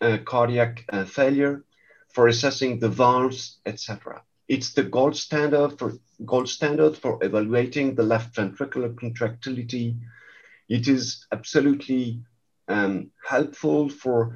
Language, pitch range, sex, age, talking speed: English, 115-140 Hz, male, 50-69, 115 wpm